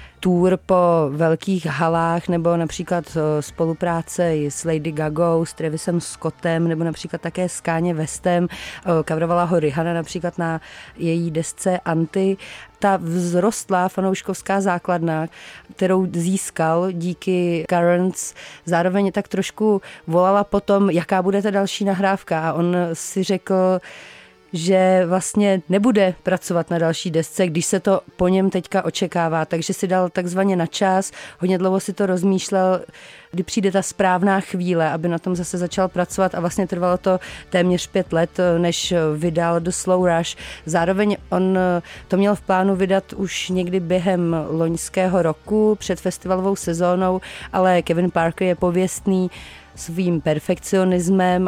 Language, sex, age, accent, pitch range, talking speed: Czech, female, 30-49, native, 165-185 Hz, 140 wpm